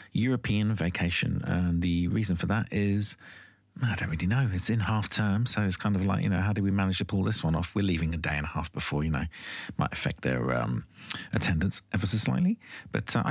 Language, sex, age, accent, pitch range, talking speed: English, male, 40-59, British, 85-105 Hz, 235 wpm